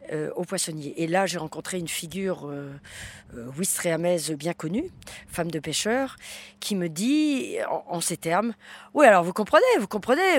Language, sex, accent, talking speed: French, female, French, 175 wpm